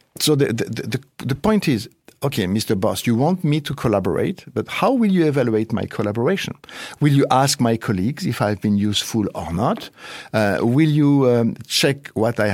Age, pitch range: 50-69, 100-140 Hz